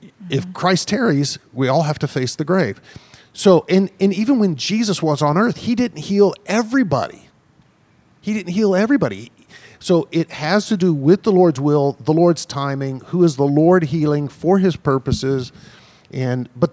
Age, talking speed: 50-69, 175 wpm